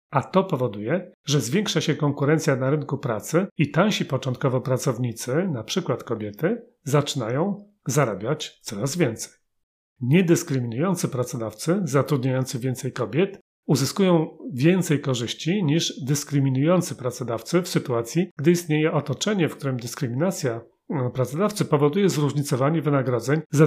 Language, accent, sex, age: Polish, native, male, 40-59